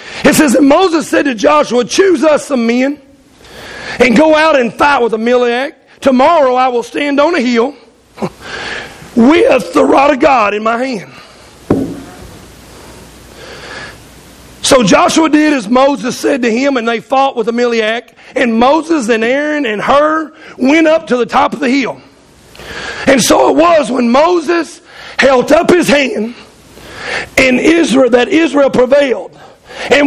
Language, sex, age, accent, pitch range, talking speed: English, male, 40-59, American, 240-300 Hz, 150 wpm